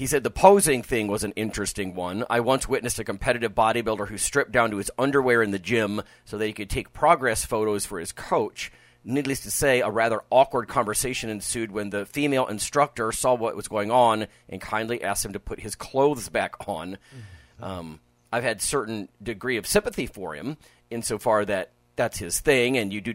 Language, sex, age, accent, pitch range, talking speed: English, male, 40-59, American, 90-120 Hz, 200 wpm